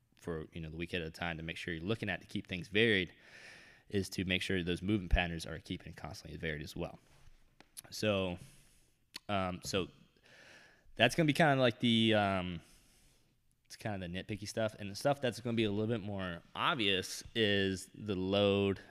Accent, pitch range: American, 90-105 Hz